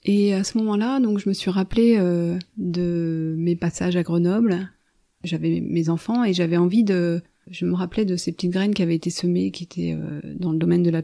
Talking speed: 225 wpm